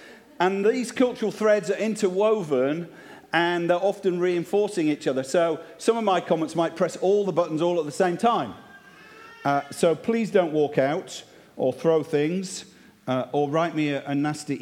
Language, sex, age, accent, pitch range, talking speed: English, male, 50-69, British, 155-225 Hz, 175 wpm